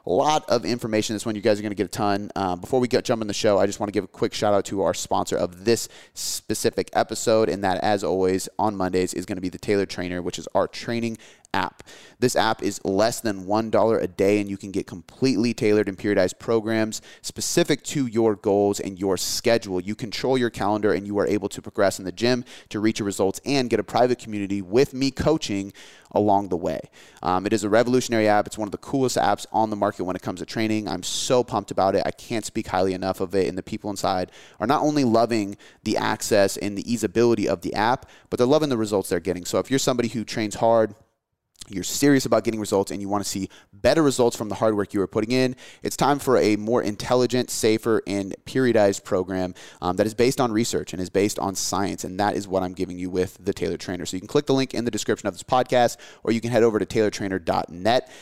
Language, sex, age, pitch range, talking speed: English, male, 30-49, 95-120 Hz, 250 wpm